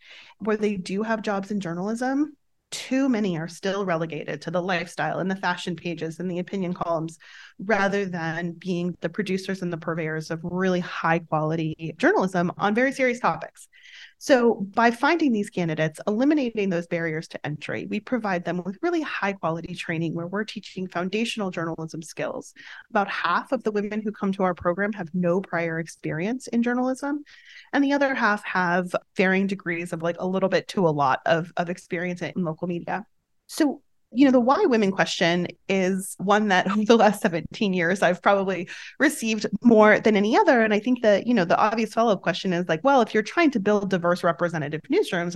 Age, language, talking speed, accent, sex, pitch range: 30-49, English, 190 wpm, American, female, 170-220 Hz